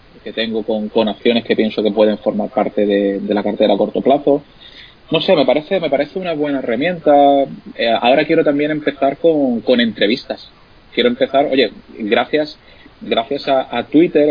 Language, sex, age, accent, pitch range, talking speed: Spanish, male, 20-39, Spanish, 105-145 Hz, 180 wpm